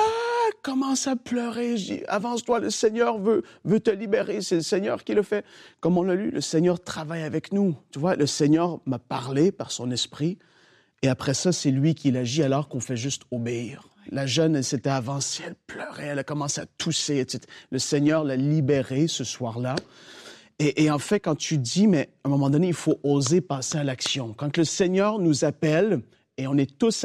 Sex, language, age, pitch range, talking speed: male, French, 40-59, 140-185 Hz, 210 wpm